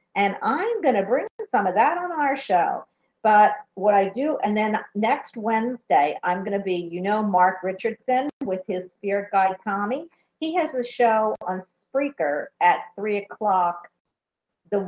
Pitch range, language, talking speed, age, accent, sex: 185-265 Hz, English, 170 wpm, 50-69, American, female